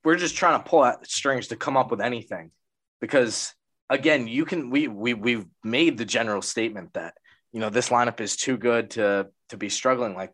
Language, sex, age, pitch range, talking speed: English, male, 20-39, 105-140 Hz, 210 wpm